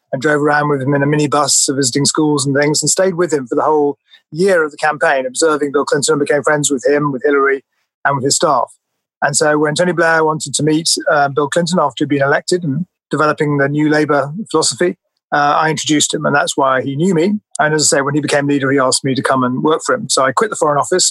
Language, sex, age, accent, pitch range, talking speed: English, male, 30-49, British, 145-165 Hz, 260 wpm